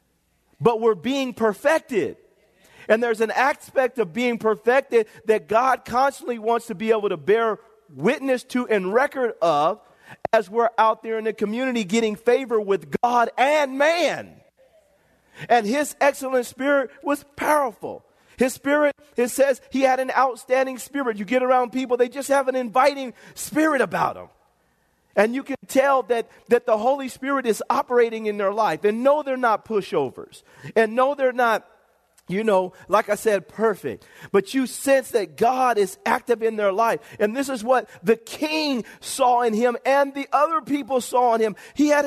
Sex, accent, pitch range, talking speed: male, American, 220-265 Hz, 175 wpm